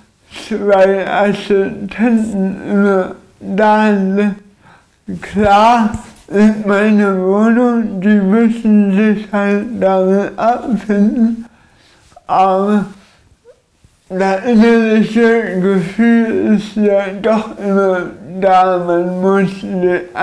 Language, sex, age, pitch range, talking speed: German, male, 60-79, 195-220 Hz, 80 wpm